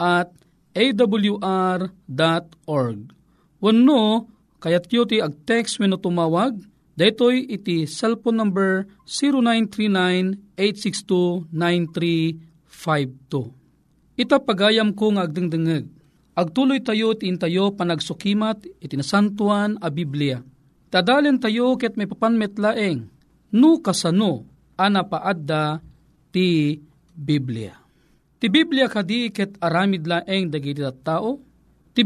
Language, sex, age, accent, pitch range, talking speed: Filipino, male, 40-59, native, 165-225 Hz, 90 wpm